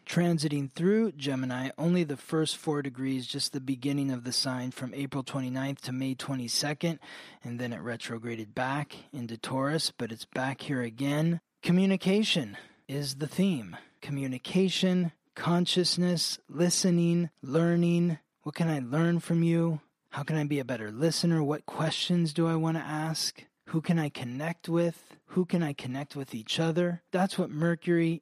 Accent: American